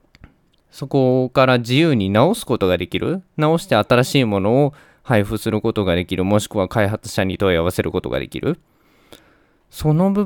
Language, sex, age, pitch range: Japanese, male, 20-39, 100-140 Hz